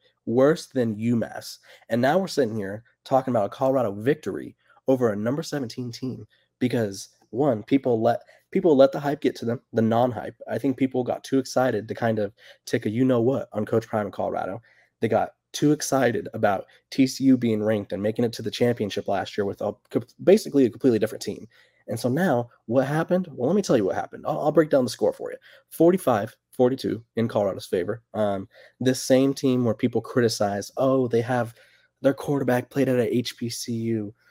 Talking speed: 200 wpm